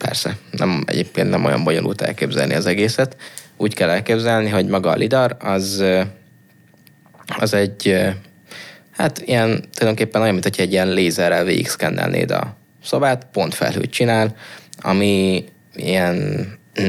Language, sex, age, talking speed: English, male, 20-39, 130 wpm